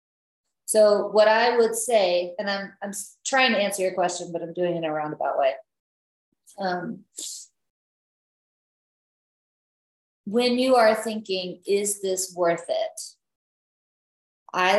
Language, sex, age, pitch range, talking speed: English, female, 30-49, 170-220 Hz, 125 wpm